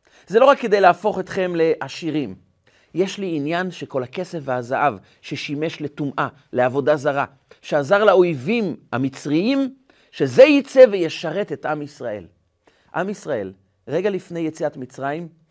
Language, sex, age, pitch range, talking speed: Hebrew, male, 40-59, 140-205 Hz, 125 wpm